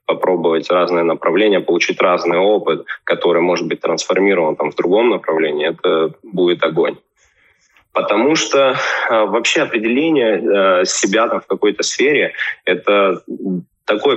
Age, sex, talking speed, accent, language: 20-39, male, 130 wpm, native, Russian